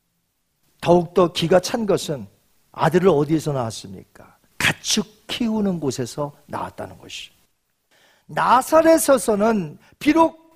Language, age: Korean, 40-59